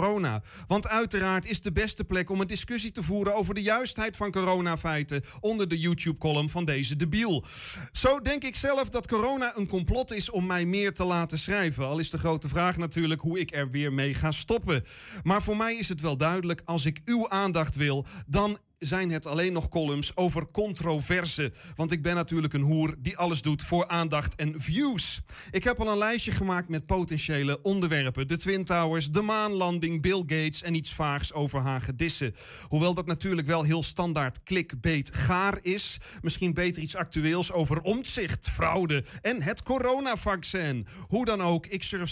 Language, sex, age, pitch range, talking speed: Dutch, male, 30-49, 150-195 Hz, 185 wpm